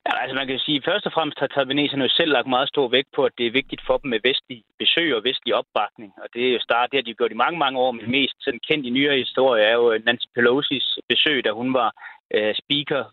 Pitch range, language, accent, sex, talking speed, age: 120-155 Hz, Danish, native, male, 270 wpm, 30-49